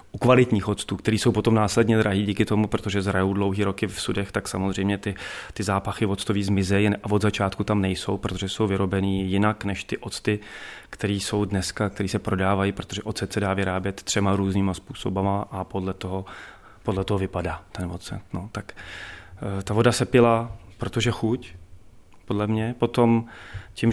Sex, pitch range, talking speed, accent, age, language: male, 95-110 Hz, 170 wpm, native, 30-49, Czech